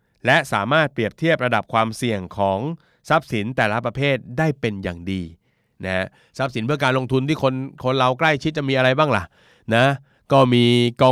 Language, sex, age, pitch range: Thai, male, 20-39, 105-135 Hz